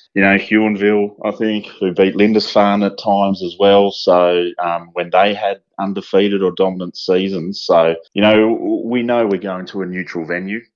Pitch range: 85-95 Hz